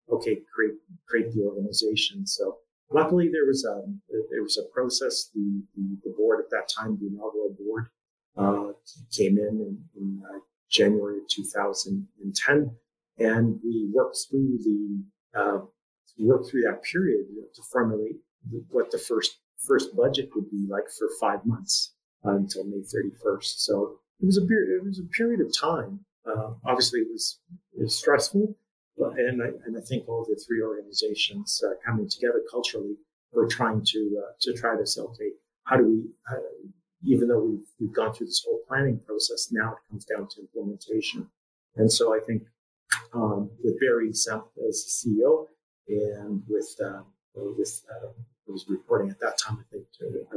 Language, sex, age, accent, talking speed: English, male, 40-59, American, 175 wpm